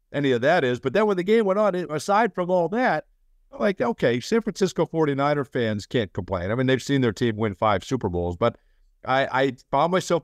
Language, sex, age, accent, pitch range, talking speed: English, male, 50-69, American, 115-175 Hz, 230 wpm